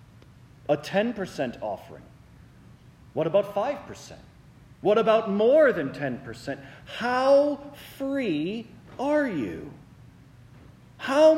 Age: 40-59